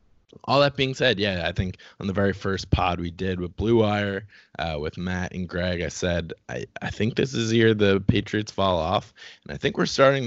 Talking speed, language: 235 wpm, English